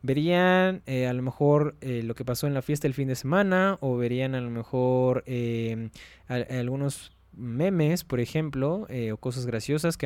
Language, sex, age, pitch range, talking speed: Spanish, male, 20-39, 120-155 Hz, 185 wpm